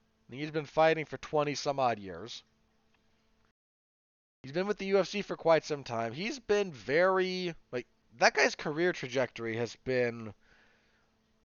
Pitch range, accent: 115-165 Hz, American